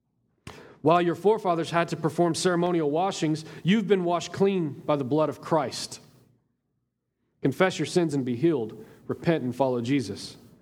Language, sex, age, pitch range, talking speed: English, male, 40-59, 145-195 Hz, 155 wpm